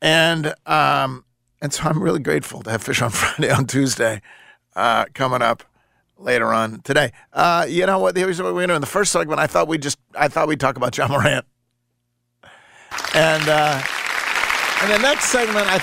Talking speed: 195 wpm